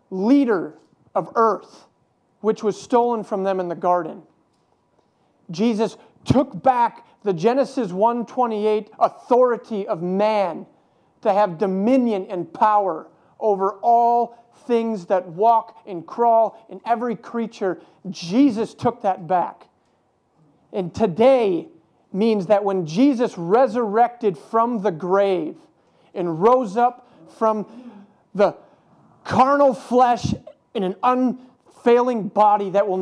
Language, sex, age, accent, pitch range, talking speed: English, male, 40-59, American, 190-240 Hz, 115 wpm